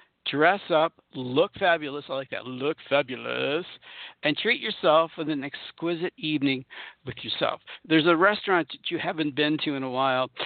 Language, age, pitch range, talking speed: English, 60-79, 135-185 Hz, 165 wpm